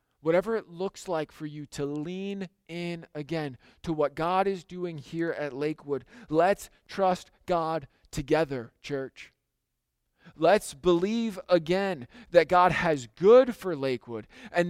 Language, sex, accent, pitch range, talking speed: English, male, American, 120-175 Hz, 135 wpm